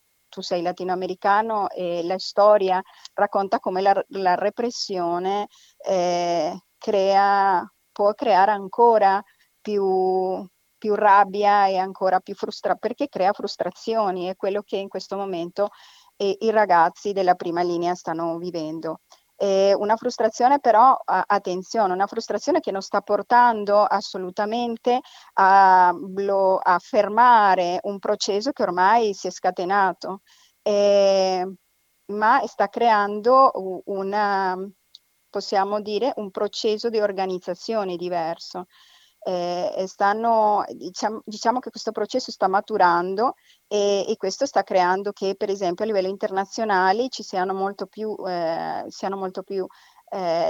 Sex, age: female, 40-59